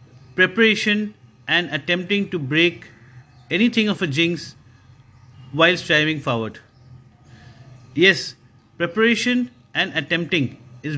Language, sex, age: English, male, 50-69